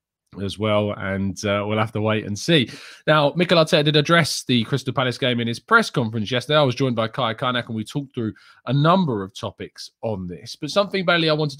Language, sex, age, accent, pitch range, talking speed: English, male, 20-39, British, 105-150 Hz, 235 wpm